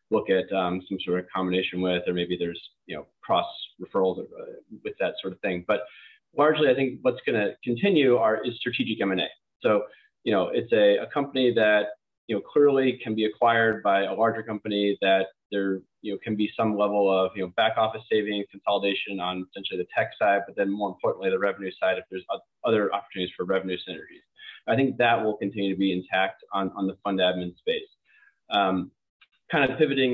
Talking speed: 205 wpm